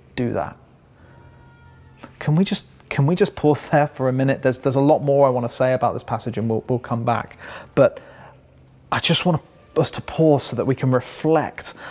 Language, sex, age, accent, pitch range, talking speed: English, male, 30-49, British, 115-130 Hz, 205 wpm